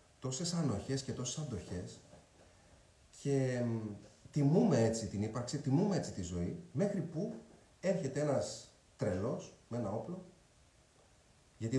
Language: Greek